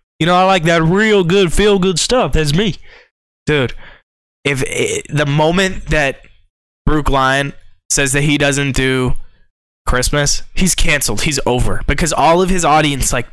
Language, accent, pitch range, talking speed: English, American, 135-180 Hz, 160 wpm